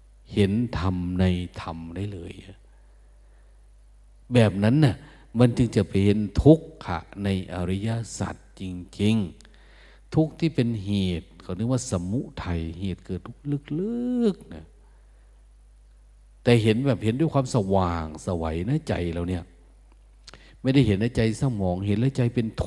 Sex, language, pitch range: male, Thai, 85-125 Hz